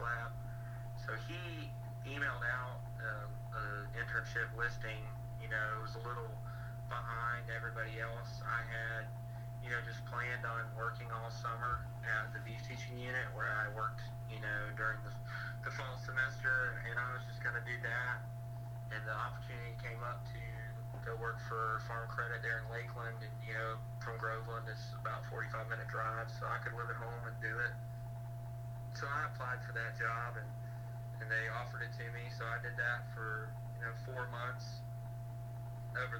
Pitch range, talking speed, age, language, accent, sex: 115-120 Hz, 175 wpm, 30-49, English, American, male